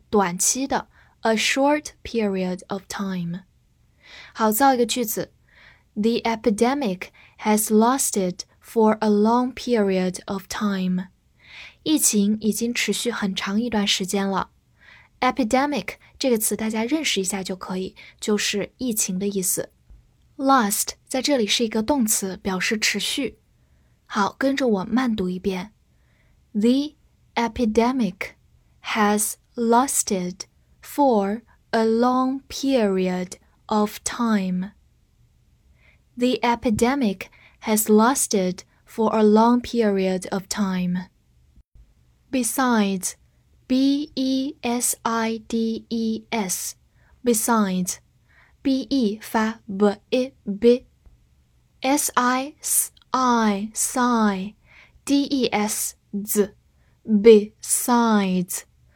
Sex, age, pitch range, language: female, 10-29, 195-245 Hz, Chinese